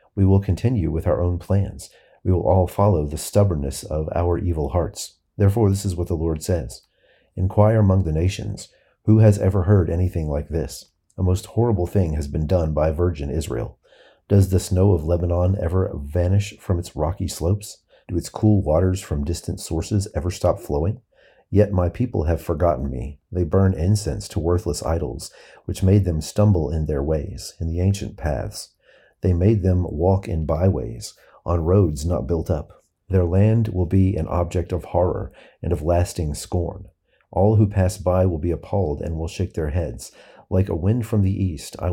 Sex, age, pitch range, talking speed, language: male, 40-59, 80-100 Hz, 185 wpm, English